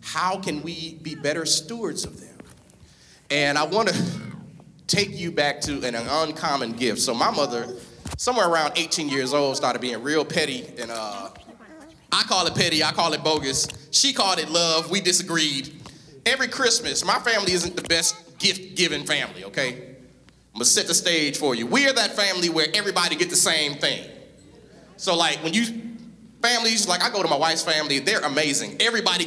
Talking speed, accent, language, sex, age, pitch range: 180 wpm, American, English, male, 30-49, 160-235 Hz